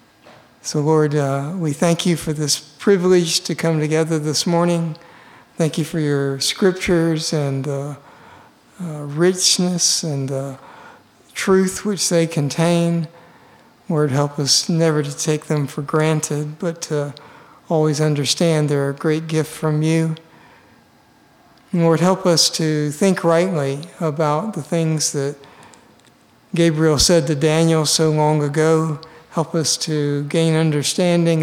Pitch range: 150-170 Hz